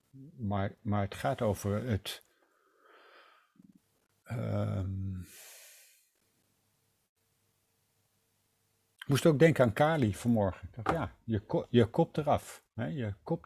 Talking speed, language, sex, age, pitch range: 110 wpm, Dutch, male, 50-69, 100-115 Hz